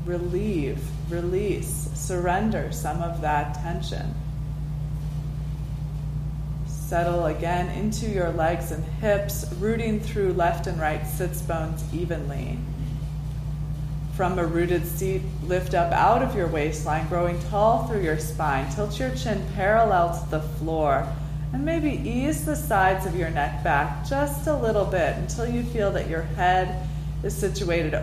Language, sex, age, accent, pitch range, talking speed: English, female, 20-39, American, 150-175 Hz, 140 wpm